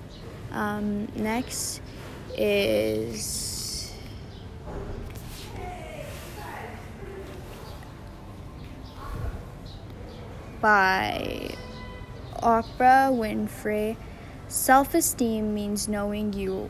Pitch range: 195-230 Hz